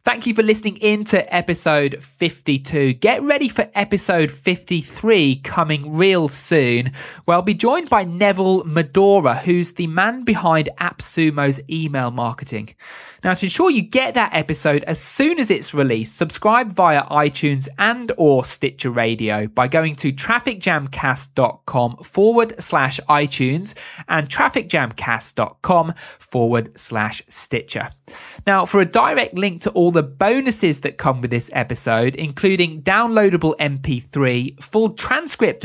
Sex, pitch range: male, 135-200 Hz